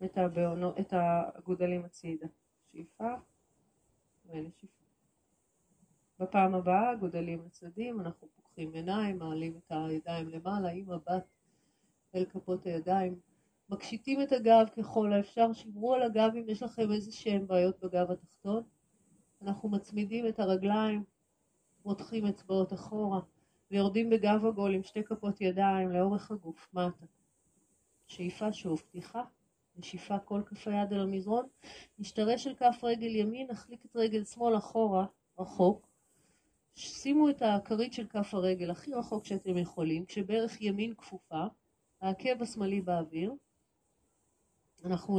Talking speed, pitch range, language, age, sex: 125 wpm, 180-220 Hz, Hebrew, 30-49, female